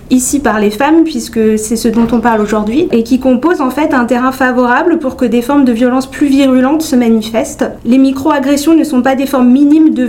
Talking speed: 225 wpm